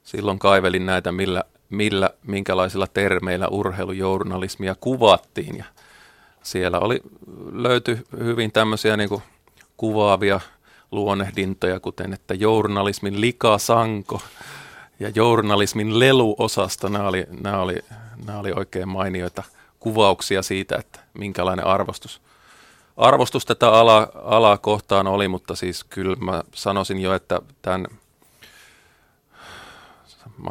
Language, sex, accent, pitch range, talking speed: Finnish, male, native, 95-105 Hz, 105 wpm